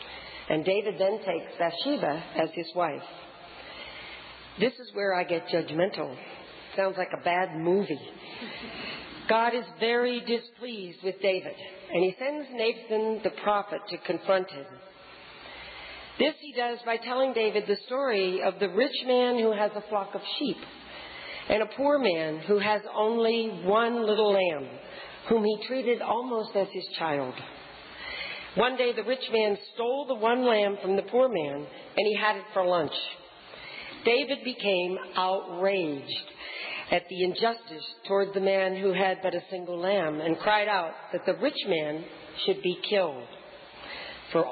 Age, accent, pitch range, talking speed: 50-69, American, 180-235 Hz, 155 wpm